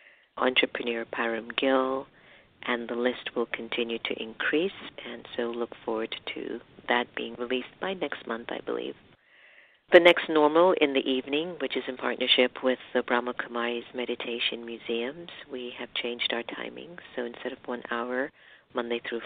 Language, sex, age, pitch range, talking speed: English, female, 50-69, 115-130 Hz, 160 wpm